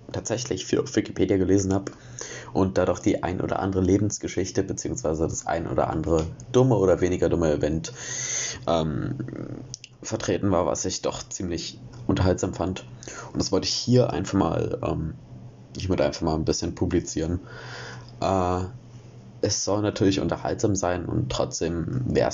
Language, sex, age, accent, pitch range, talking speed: German, male, 20-39, German, 90-120 Hz, 150 wpm